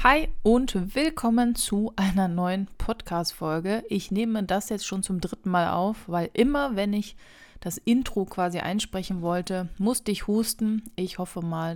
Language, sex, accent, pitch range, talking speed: German, female, German, 185-220 Hz, 160 wpm